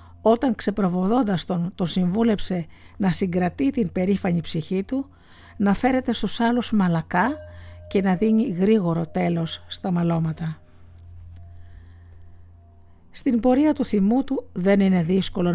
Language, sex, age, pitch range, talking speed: Greek, female, 50-69, 155-215 Hz, 120 wpm